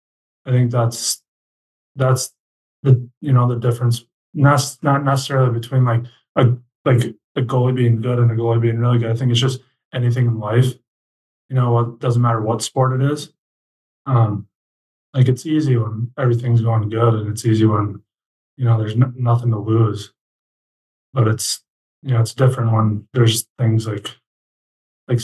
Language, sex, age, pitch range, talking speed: English, male, 20-39, 110-125 Hz, 175 wpm